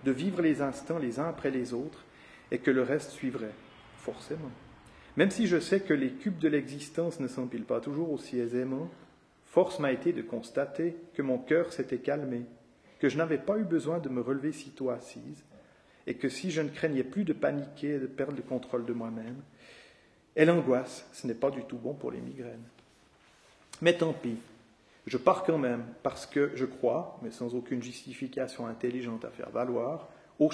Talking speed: 195 wpm